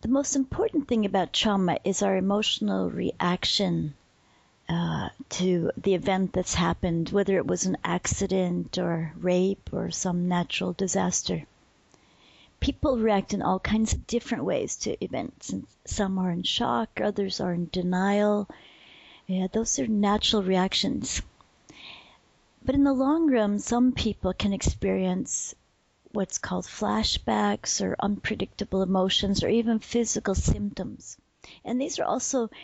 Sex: female